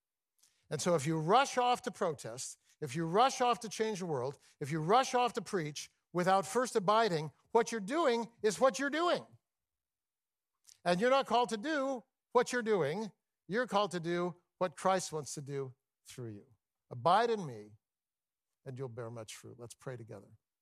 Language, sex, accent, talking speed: English, male, American, 185 wpm